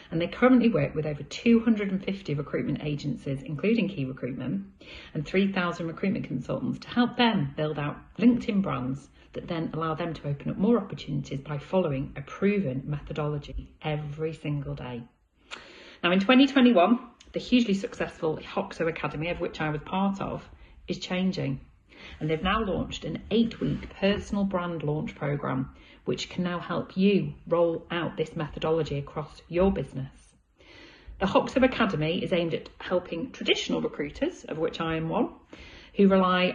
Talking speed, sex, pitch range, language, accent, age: 155 wpm, female, 150-195 Hz, English, British, 40-59